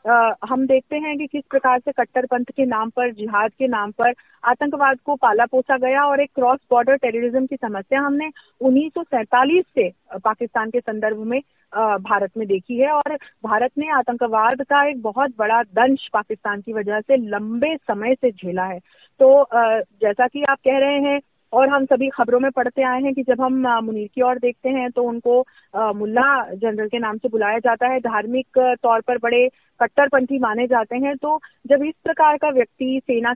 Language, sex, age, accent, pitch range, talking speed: Hindi, female, 30-49, native, 235-280 Hz, 190 wpm